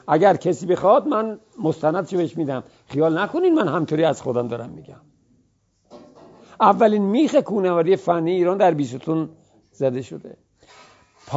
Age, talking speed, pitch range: 50-69, 130 wpm, 135-195 Hz